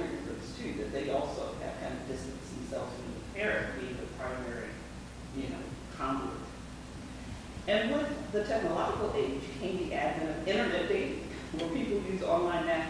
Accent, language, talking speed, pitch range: American, English, 155 wpm, 145-225 Hz